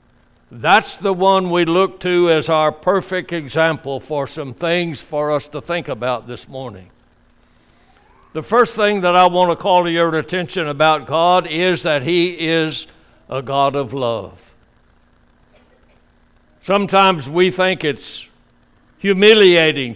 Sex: male